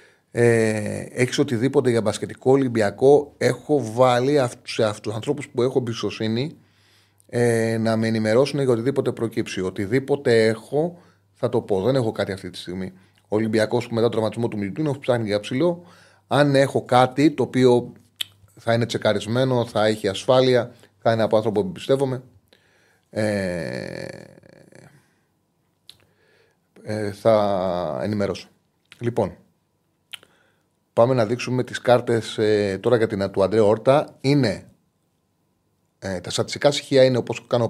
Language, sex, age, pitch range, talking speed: Greek, male, 30-49, 105-135 Hz, 130 wpm